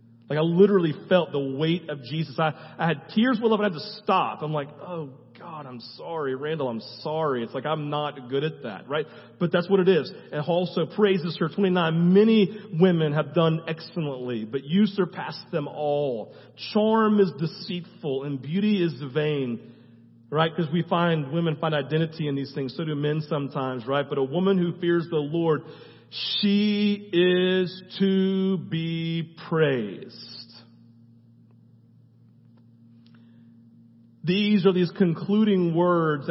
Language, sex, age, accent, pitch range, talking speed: English, male, 40-59, American, 145-190 Hz, 155 wpm